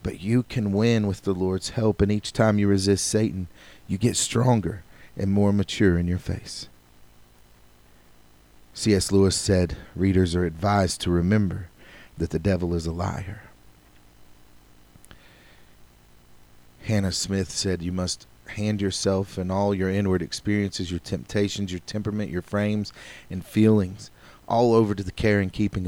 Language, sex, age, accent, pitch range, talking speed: English, male, 40-59, American, 90-105 Hz, 150 wpm